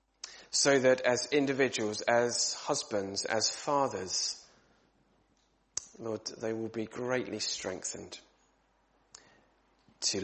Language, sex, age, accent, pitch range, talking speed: English, male, 30-49, British, 110-135 Hz, 90 wpm